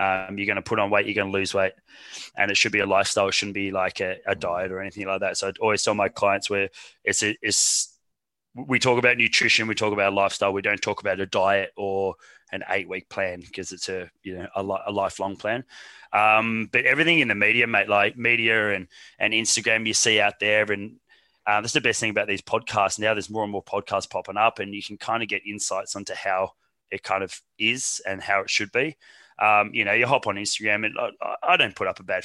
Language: English